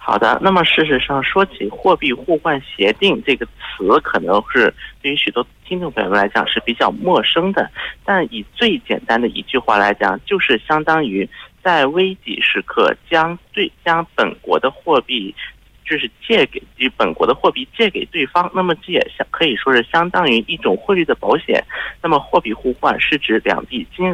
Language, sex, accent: Korean, male, Chinese